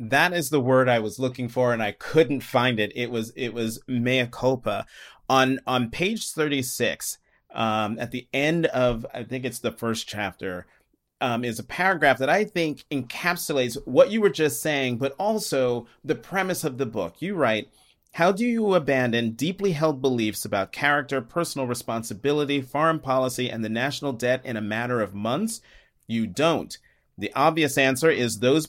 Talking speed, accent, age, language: 180 wpm, American, 30-49, English